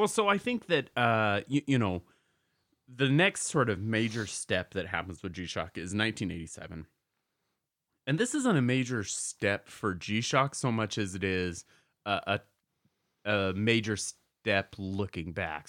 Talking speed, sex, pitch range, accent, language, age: 155 wpm, male, 95-125 Hz, American, English, 30-49